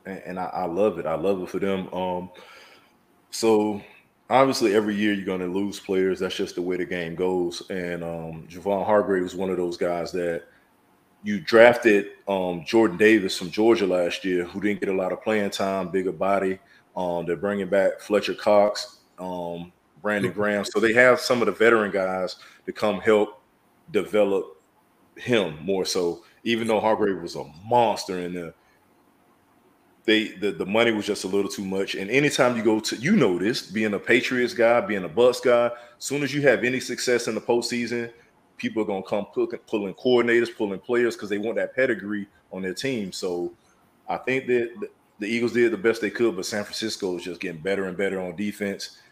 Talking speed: 200 wpm